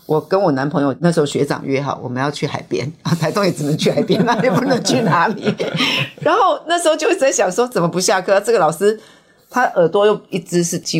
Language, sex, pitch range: Chinese, female, 155-245 Hz